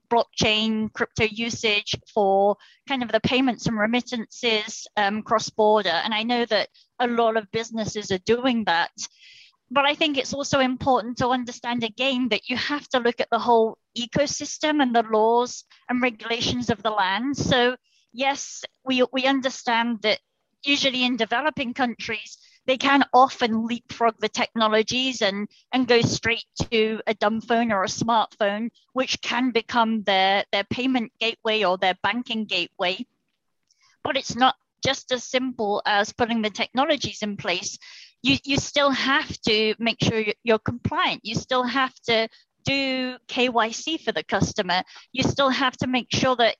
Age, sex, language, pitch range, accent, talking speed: 30-49, female, English, 220-260 Hz, British, 160 wpm